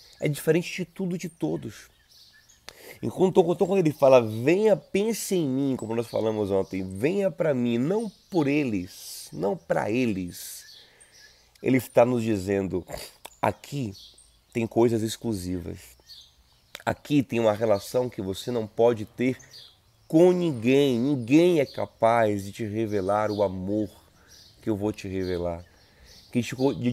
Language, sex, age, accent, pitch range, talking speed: Portuguese, male, 30-49, Brazilian, 100-130 Hz, 135 wpm